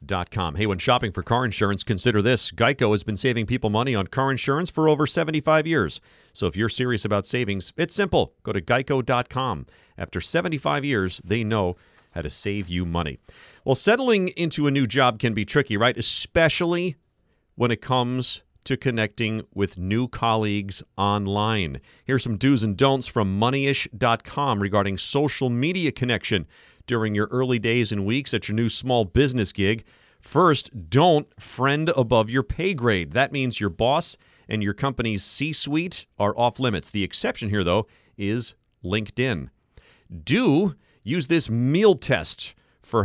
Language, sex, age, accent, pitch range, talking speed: English, male, 40-59, American, 105-135 Hz, 160 wpm